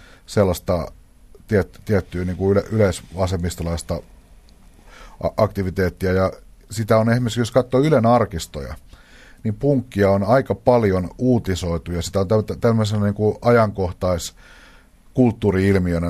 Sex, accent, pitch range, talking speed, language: male, native, 85-105 Hz, 105 wpm, Finnish